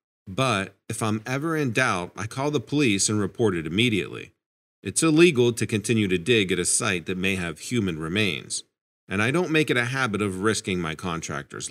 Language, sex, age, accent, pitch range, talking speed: English, male, 50-69, American, 95-135 Hz, 200 wpm